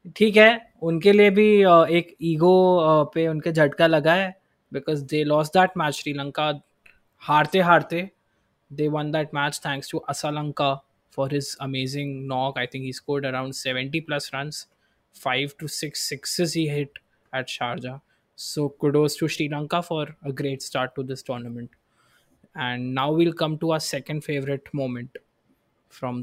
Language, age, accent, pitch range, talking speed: Hindi, 20-39, native, 145-175 Hz, 160 wpm